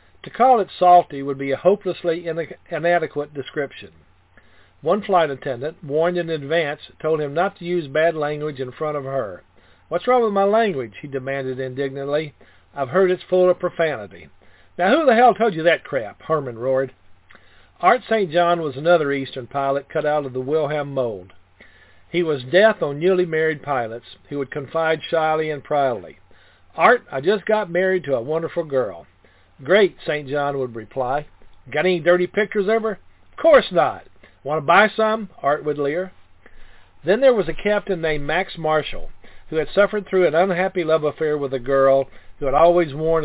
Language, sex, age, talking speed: English, male, 50-69, 180 wpm